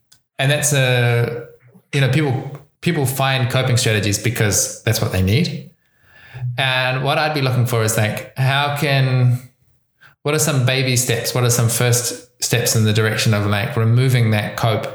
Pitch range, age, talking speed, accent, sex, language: 110-130 Hz, 20-39, 175 wpm, Australian, male, English